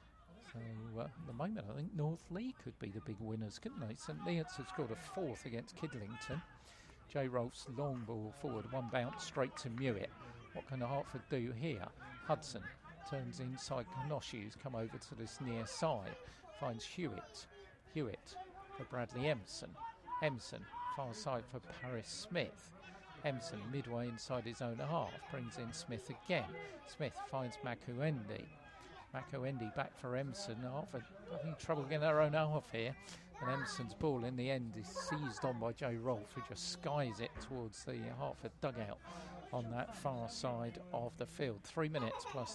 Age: 50-69